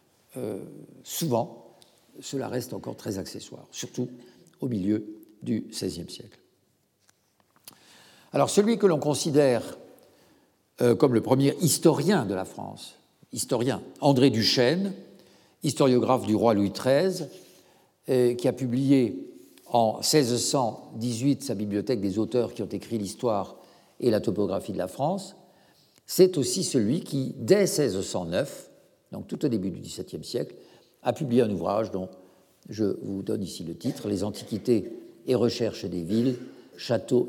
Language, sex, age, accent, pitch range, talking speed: French, male, 60-79, French, 100-145 Hz, 135 wpm